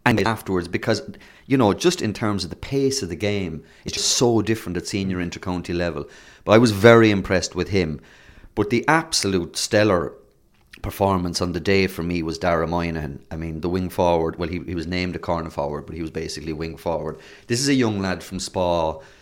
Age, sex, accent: 30-49, male, Irish